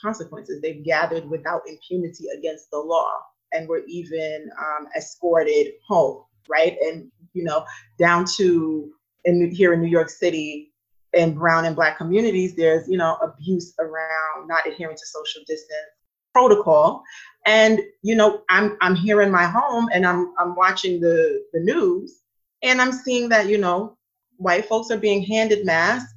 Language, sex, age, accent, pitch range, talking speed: English, female, 30-49, American, 160-205 Hz, 160 wpm